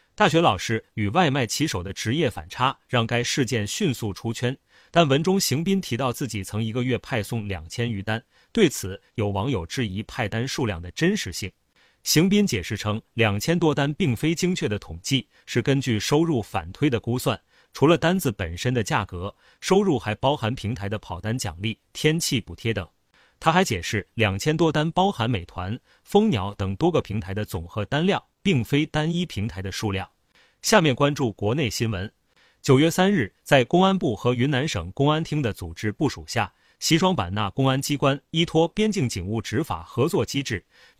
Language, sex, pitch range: Chinese, male, 105-150 Hz